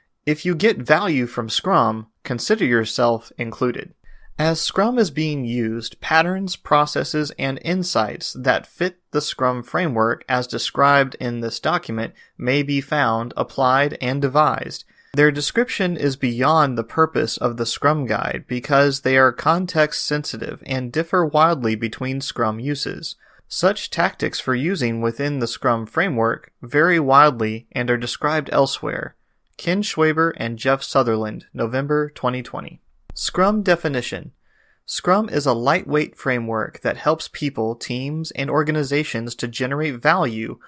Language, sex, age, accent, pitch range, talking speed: German, male, 30-49, American, 120-155 Hz, 135 wpm